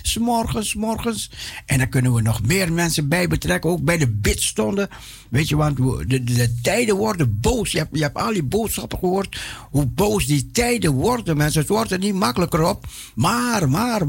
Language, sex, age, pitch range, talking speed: Dutch, male, 60-79, 130-195 Hz, 195 wpm